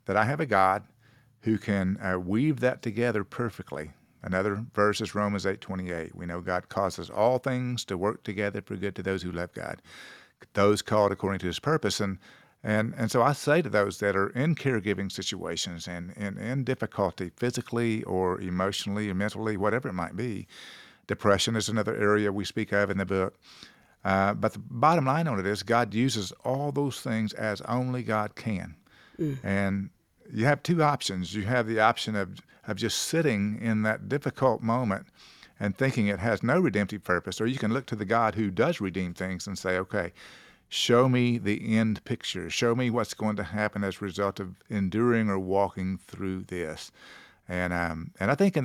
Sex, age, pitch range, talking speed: male, 50-69, 95-115 Hz, 190 wpm